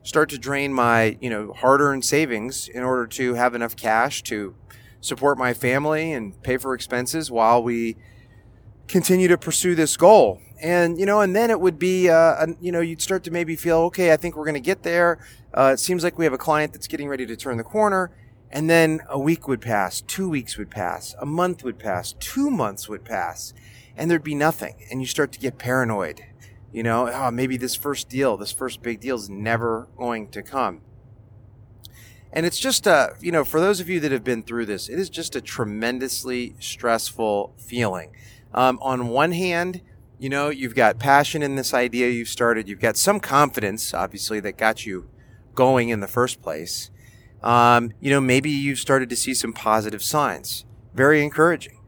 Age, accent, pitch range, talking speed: 30-49, American, 115-155 Hz, 200 wpm